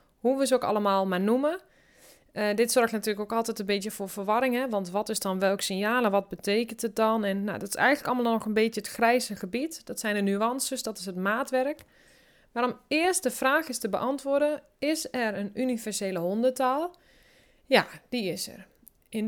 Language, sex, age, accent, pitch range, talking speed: Dutch, female, 20-39, Dutch, 210-255 Hz, 205 wpm